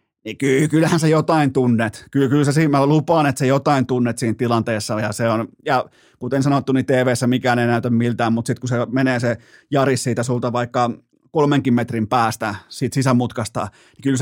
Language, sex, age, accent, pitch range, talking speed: Finnish, male, 30-49, native, 120-150 Hz, 185 wpm